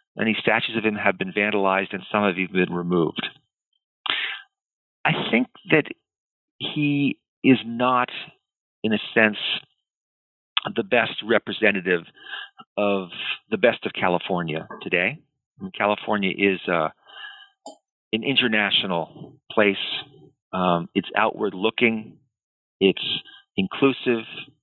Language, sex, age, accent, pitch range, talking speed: English, male, 50-69, American, 95-125 Hz, 110 wpm